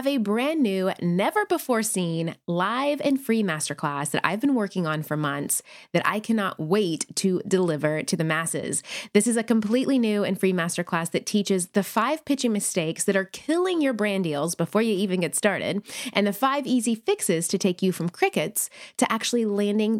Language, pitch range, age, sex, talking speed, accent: English, 185-255 Hz, 20-39, female, 185 wpm, American